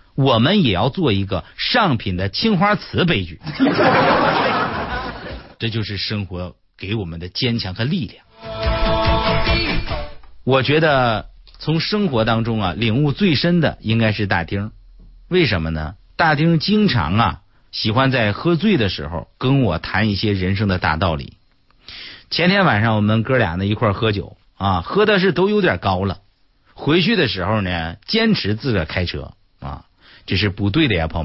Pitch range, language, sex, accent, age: 90-135 Hz, Chinese, male, native, 50-69